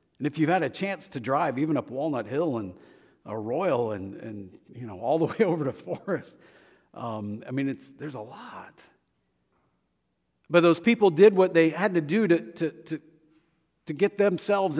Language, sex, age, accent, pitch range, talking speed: English, male, 50-69, American, 115-180 Hz, 190 wpm